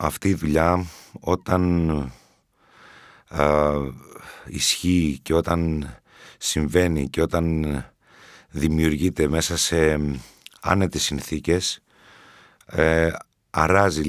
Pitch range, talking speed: 75-90 Hz, 70 wpm